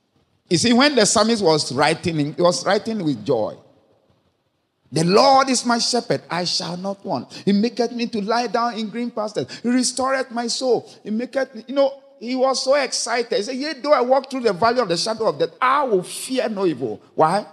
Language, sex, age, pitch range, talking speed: English, male, 50-69, 150-235 Hz, 210 wpm